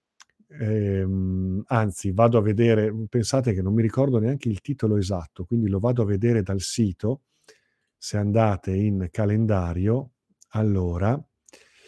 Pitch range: 105-140 Hz